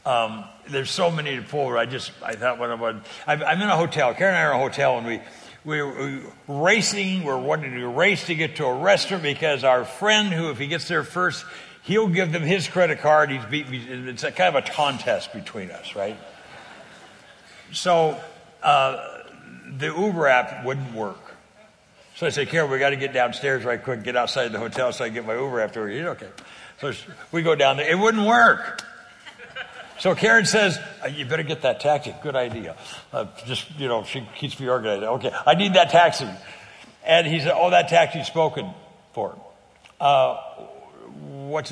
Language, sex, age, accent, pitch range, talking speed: English, male, 60-79, American, 135-180 Hz, 195 wpm